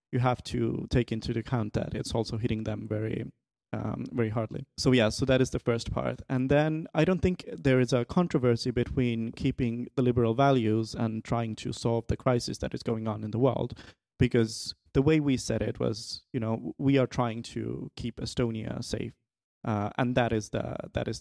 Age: 30-49